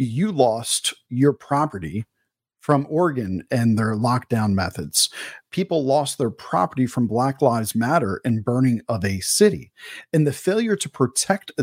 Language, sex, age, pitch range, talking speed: English, male, 40-59, 130-180 Hz, 145 wpm